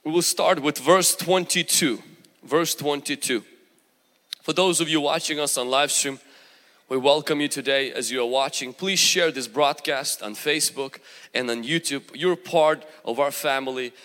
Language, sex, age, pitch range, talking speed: English, male, 20-39, 155-195 Hz, 165 wpm